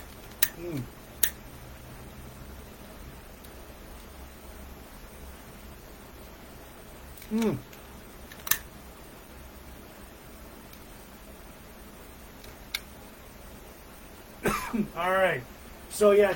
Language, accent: English, American